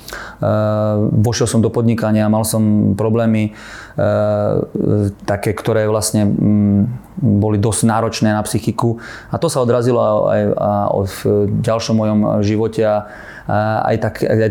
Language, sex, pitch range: Slovak, male, 105-115 Hz